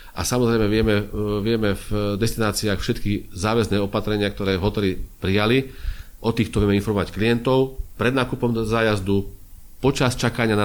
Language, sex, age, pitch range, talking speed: Slovak, male, 40-59, 95-105 Hz, 130 wpm